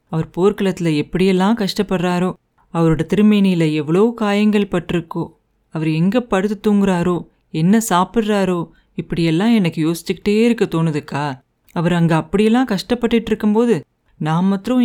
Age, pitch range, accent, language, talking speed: 30-49, 165-220 Hz, native, Tamil, 110 wpm